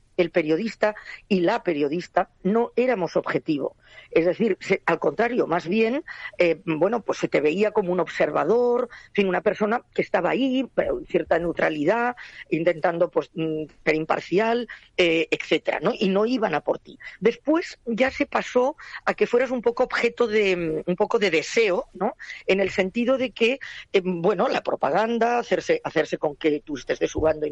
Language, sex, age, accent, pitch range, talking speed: Spanish, female, 40-59, Spanish, 160-240 Hz, 175 wpm